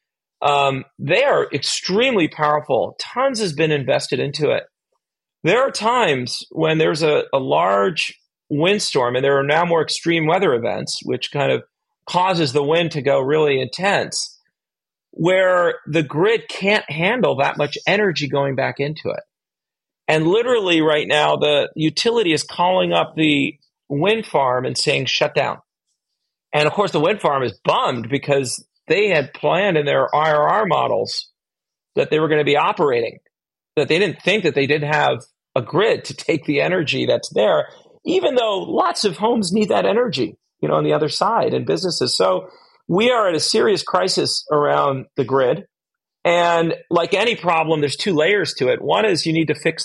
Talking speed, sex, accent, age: 175 wpm, male, American, 40-59